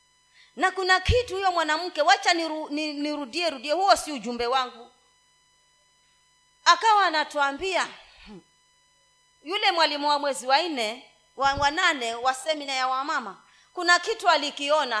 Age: 30-49